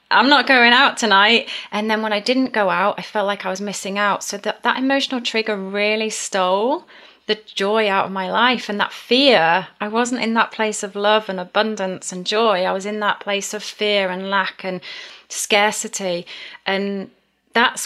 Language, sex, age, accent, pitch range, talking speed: English, female, 30-49, British, 190-230 Hz, 200 wpm